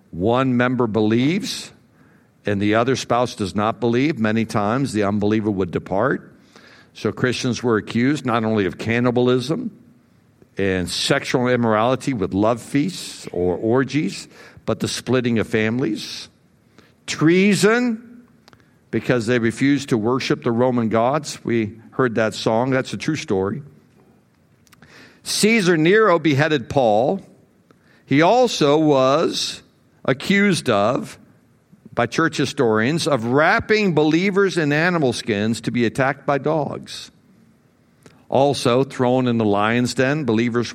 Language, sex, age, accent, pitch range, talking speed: English, male, 60-79, American, 110-150 Hz, 125 wpm